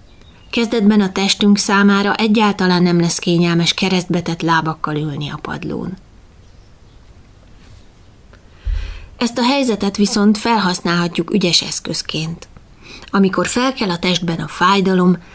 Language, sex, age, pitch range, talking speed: Hungarian, female, 20-39, 155-200 Hz, 105 wpm